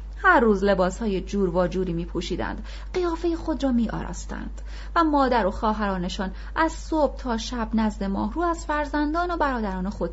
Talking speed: 160 wpm